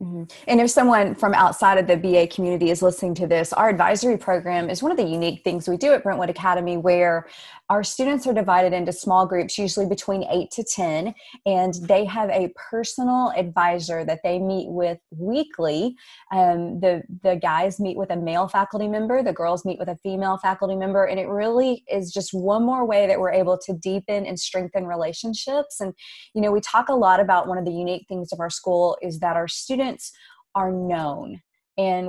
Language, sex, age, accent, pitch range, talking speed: English, female, 20-39, American, 175-205 Hz, 205 wpm